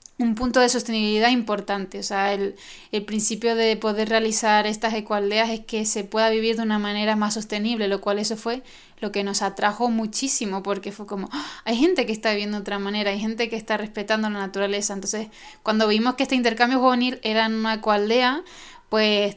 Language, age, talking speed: Spanish, 20-39, 200 wpm